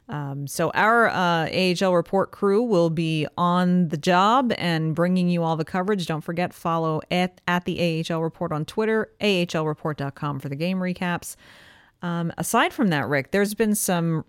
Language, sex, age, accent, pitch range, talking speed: English, female, 30-49, American, 160-185 Hz, 170 wpm